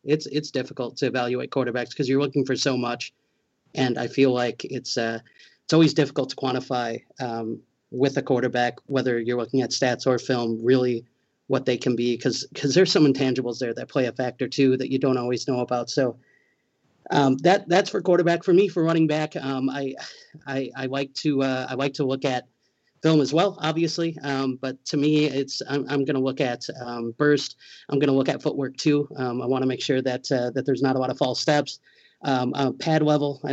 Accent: American